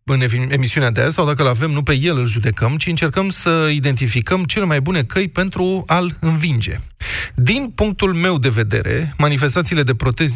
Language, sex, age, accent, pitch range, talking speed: Romanian, male, 20-39, native, 120-165 Hz, 185 wpm